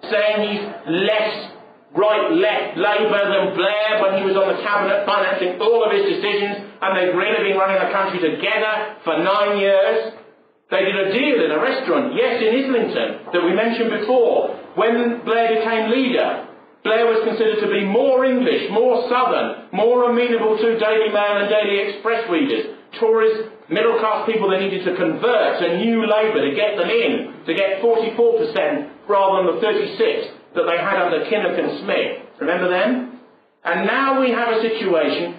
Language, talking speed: English, 175 wpm